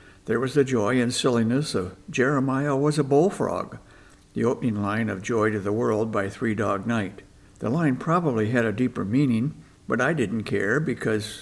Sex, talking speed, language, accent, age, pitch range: male, 185 wpm, English, American, 60-79, 110-140 Hz